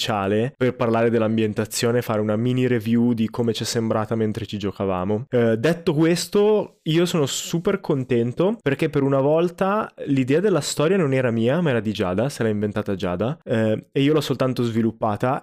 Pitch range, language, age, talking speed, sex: 115-145 Hz, Italian, 20-39, 185 wpm, male